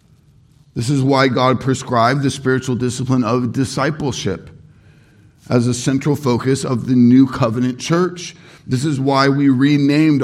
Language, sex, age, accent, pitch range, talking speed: English, male, 50-69, American, 125-155 Hz, 140 wpm